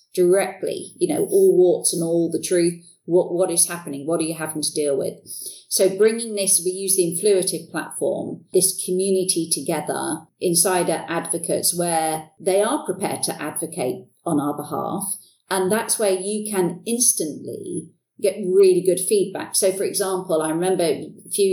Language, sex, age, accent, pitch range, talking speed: English, female, 40-59, British, 165-195 Hz, 165 wpm